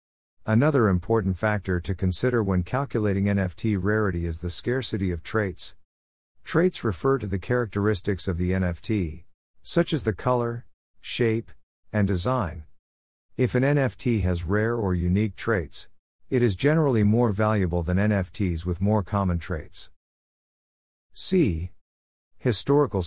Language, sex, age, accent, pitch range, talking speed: English, male, 50-69, American, 85-115 Hz, 130 wpm